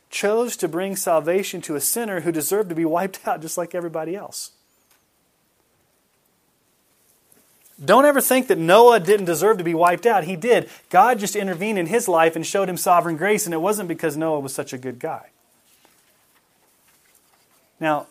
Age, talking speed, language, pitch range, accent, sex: 30-49, 170 wpm, English, 140-185 Hz, American, male